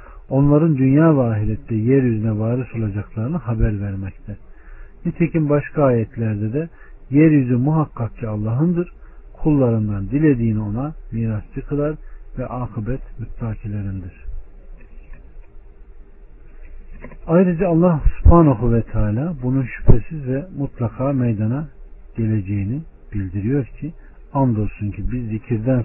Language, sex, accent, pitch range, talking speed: Turkish, male, native, 105-140 Hz, 95 wpm